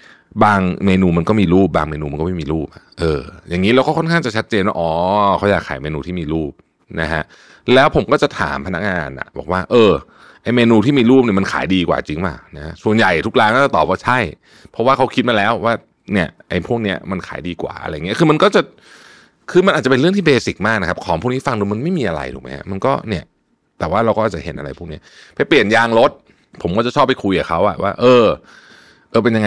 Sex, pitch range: male, 85-115 Hz